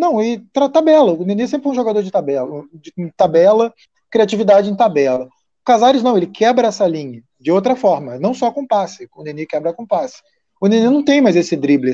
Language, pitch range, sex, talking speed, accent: Portuguese, 165-225 Hz, male, 215 wpm, Brazilian